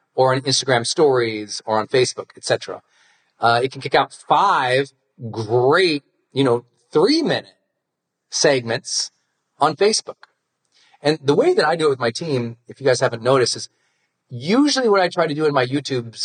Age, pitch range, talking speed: 40-59, 125-180 Hz, 170 wpm